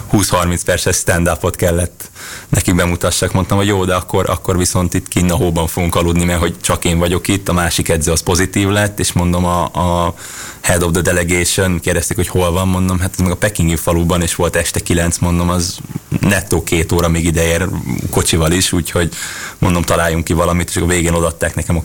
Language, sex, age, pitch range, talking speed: Hungarian, male, 20-39, 85-95 Hz, 200 wpm